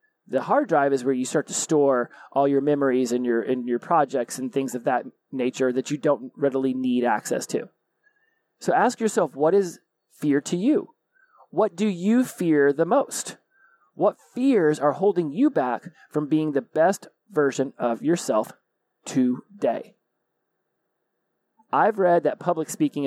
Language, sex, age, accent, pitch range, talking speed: English, male, 30-49, American, 135-175 Hz, 160 wpm